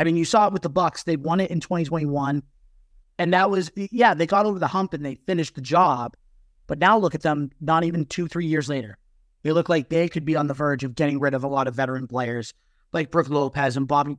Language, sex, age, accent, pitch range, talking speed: English, male, 30-49, American, 135-175 Hz, 260 wpm